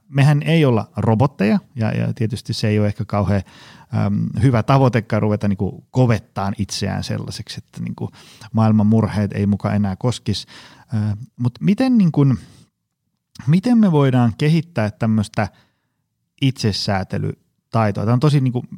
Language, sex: Finnish, male